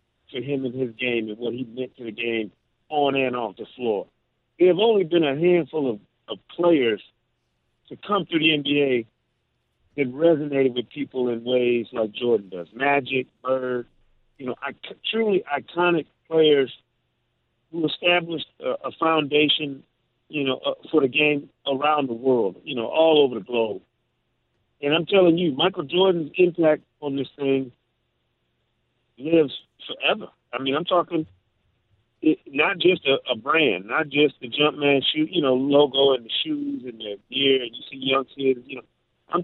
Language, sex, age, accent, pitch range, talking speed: English, male, 50-69, American, 125-165 Hz, 170 wpm